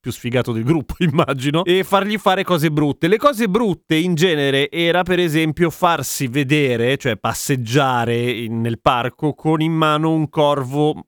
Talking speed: 155 wpm